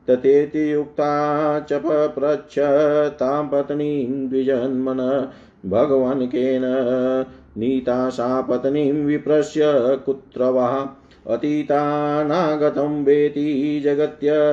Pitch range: 130-145 Hz